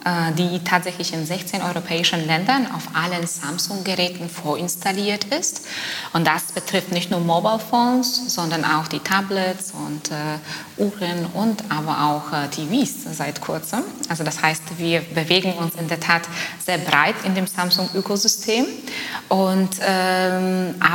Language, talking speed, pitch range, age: German, 140 wpm, 165-190 Hz, 20-39